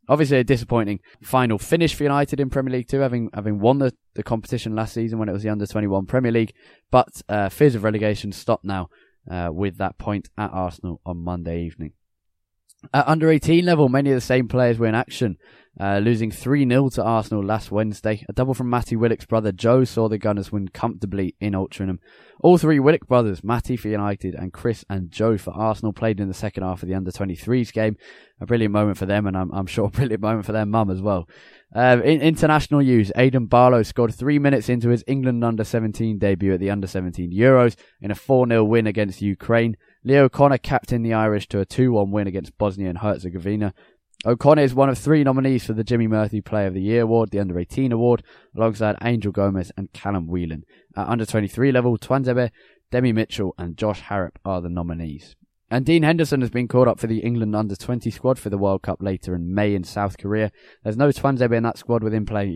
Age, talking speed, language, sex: 10-29, 210 wpm, English, male